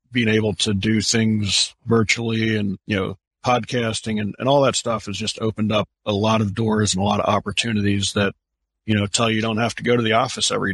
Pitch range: 105-125 Hz